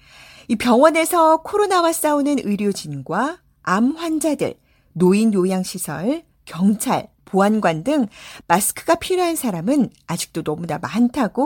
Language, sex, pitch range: Korean, female, 185-295 Hz